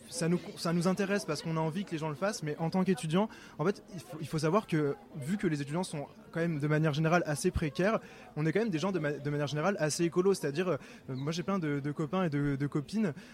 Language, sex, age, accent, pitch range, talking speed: French, male, 20-39, French, 145-175 Hz, 285 wpm